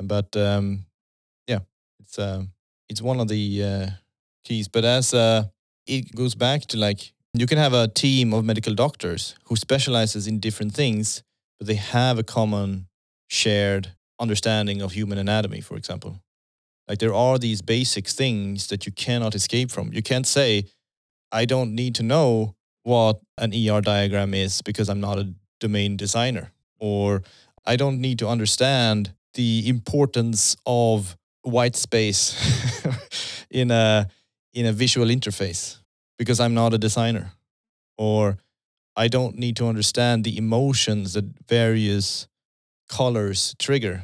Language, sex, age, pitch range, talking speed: English, male, 30-49, 100-120 Hz, 145 wpm